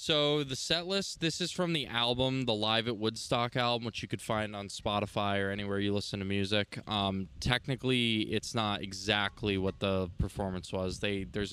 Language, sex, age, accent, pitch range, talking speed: English, male, 20-39, American, 105-125 Hz, 195 wpm